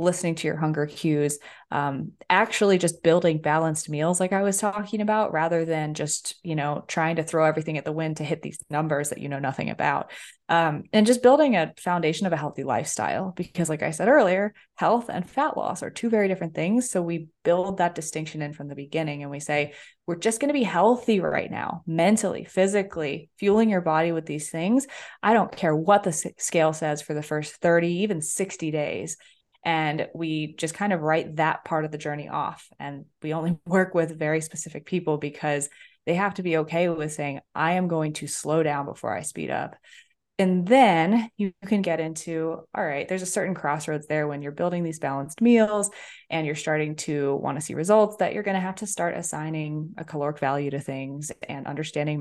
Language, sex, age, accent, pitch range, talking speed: English, female, 20-39, American, 150-190 Hz, 210 wpm